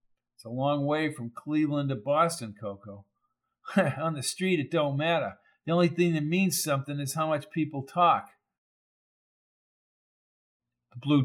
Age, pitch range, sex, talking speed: 50-69, 140-175 Hz, male, 145 wpm